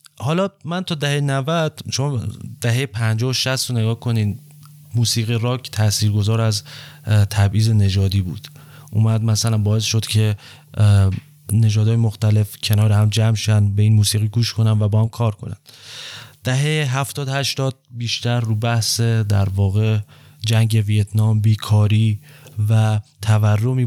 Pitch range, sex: 105-125 Hz, male